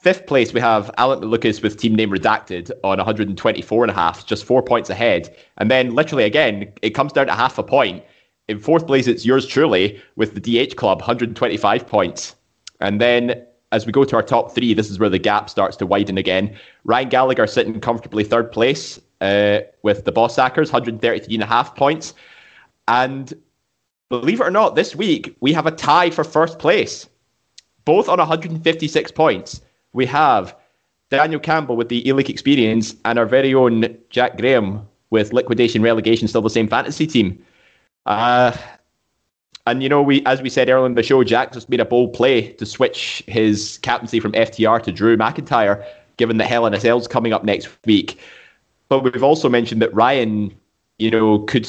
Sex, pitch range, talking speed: male, 105-130 Hz, 185 wpm